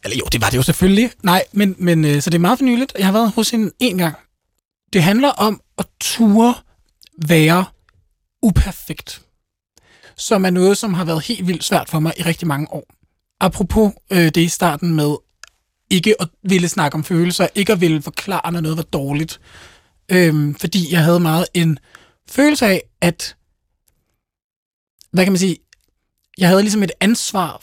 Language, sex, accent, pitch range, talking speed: Danish, male, native, 165-215 Hz, 180 wpm